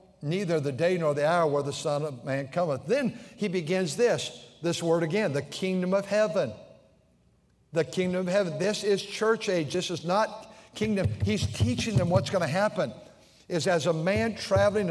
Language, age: English, 60-79